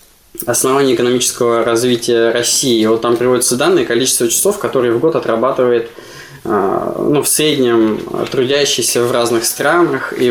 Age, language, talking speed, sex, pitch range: 20-39, Russian, 130 wpm, male, 120-155 Hz